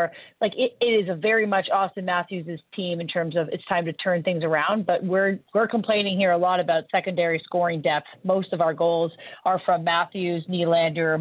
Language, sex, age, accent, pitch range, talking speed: English, female, 30-49, American, 165-200 Hz, 205 wpm